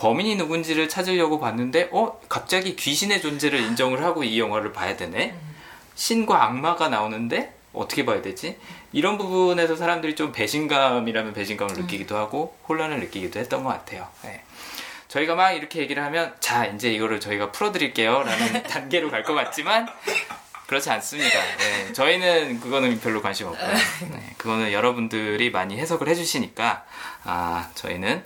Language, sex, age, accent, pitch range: Korean, male, 20-39, native, 115-170 Hz